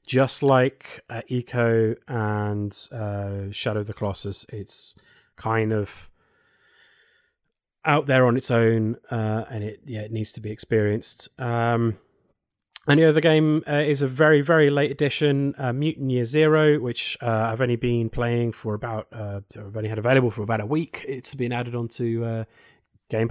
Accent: British